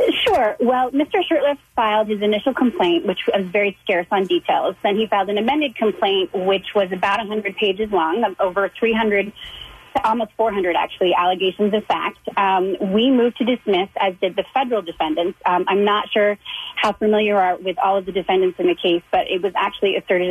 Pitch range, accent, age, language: 190-230 Hz, American, 30-49, English